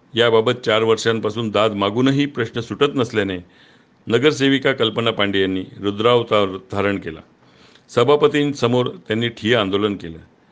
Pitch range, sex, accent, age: 100-125 Hz, male, native, 50-69